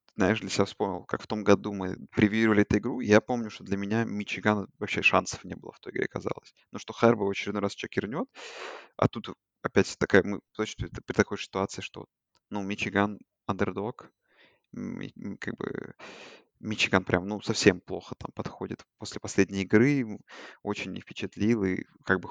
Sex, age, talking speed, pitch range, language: male, 20-39, 165 wpm, 100-110 Hz, Russian